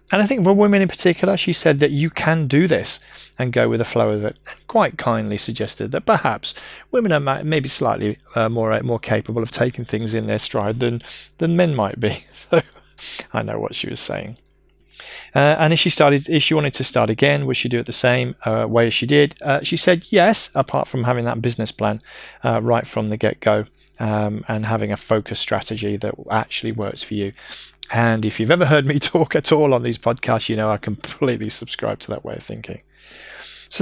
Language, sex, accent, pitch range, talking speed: English, male, British, 110-150 Hz, 220 wpm